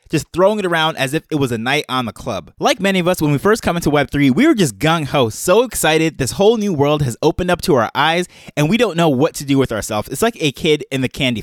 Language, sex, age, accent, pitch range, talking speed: English, male, 20-39, American, 145-210 Hz, 290 wpm